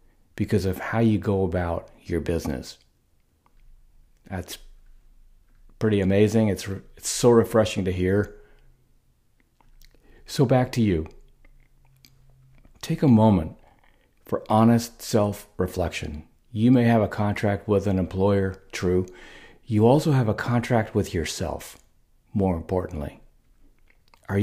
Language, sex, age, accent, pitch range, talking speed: English, male, 40-59, American, 95-115 Hz, 115 wpm